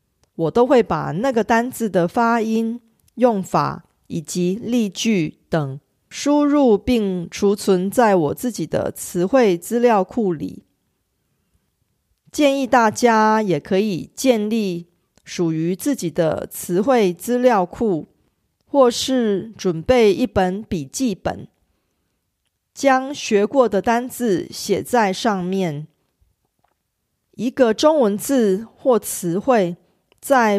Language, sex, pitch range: Korean, female, 180-245 Hz